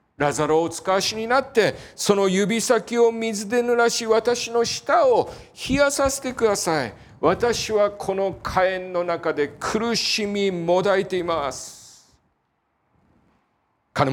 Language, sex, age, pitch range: Japanese, male, 40-59, 165-235 Hz